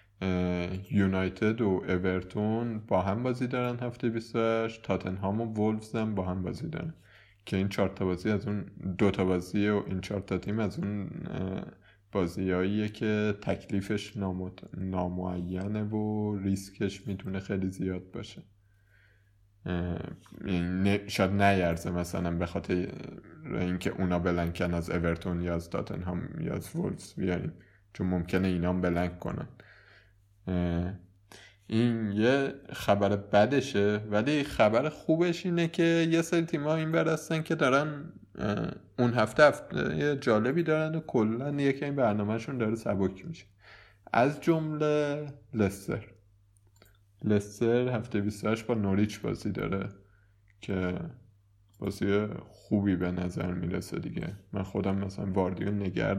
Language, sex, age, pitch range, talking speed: Persian, male, 20-39, 95-110 Hz, 125 wpm